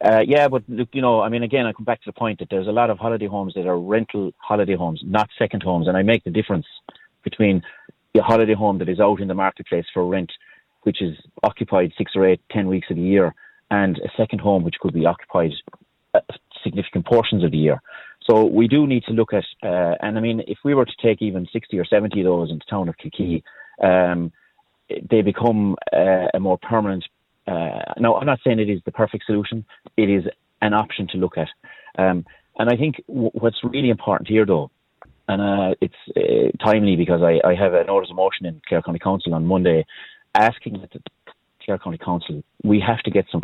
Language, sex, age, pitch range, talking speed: English, male, 30-49, 90-115 Hz, 220 wpm